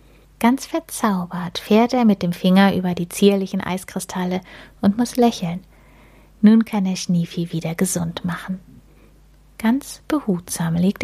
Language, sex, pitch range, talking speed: German, female, 175-220 Hz, 130 wpm